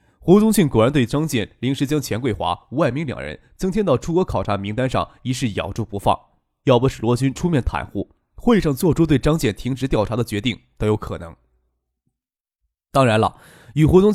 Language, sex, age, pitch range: Chinese, male, 20-39, 110-155 Hz